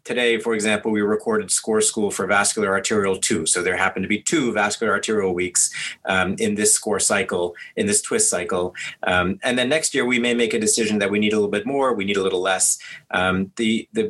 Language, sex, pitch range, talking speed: English, male, 105-125 Hz, 230 wpm